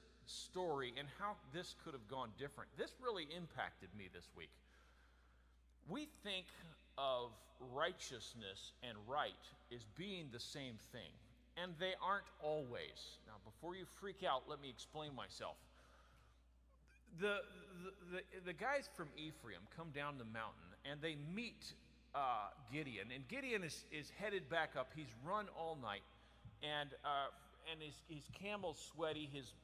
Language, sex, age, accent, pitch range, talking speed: English, male, 40-59, American, 125-205 Hz, 150 wpm